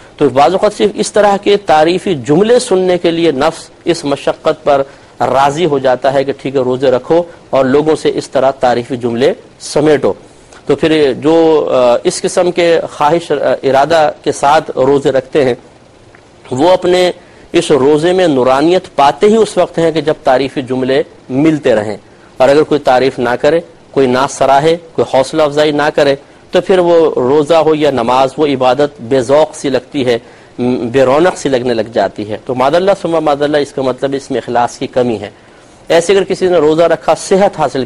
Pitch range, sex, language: 130-165 Hz, male, Urdu